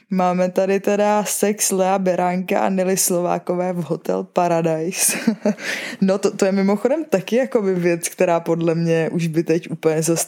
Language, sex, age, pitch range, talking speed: Czech, female, 20-39, 170-200 Hz, 160 wpm